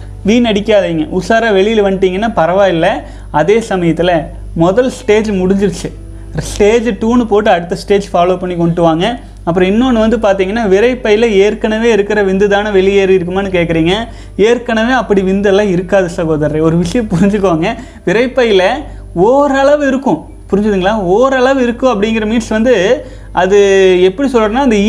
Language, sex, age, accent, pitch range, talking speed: Tamil, male, 30-49, native, 190-240 Hz, 125 wpm